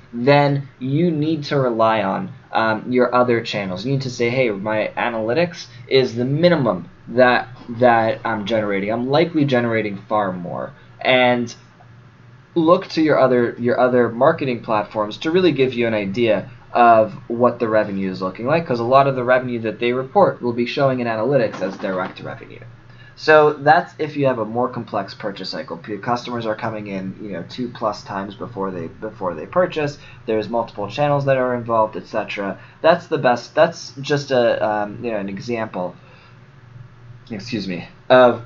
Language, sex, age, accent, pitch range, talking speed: English, male, 20-39, American, 110-140 Hz, 175 wpm